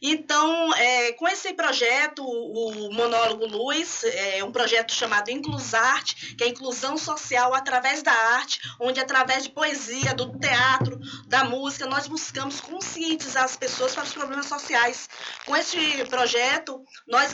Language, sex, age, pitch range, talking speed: Portuguese, female, 20-39, 250-310 Hz, 145 wpm